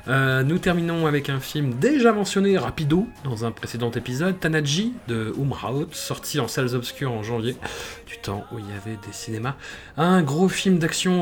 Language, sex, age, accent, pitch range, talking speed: French, male, 30-49, French, 120-185 Hz, 180 wpm